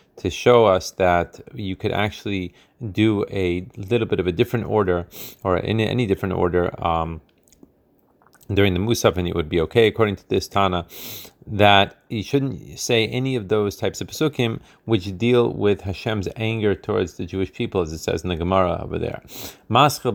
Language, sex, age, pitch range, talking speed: Hebrew, male, 30-49, 95-115 Hz, 180 wpm